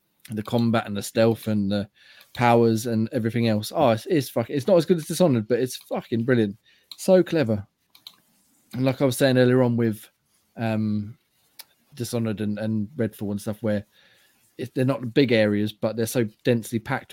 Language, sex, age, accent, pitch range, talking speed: English, male, 20-39, British, 115-130 Hz, 185 wpm